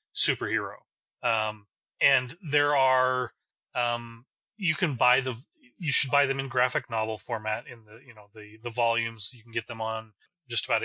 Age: 30-49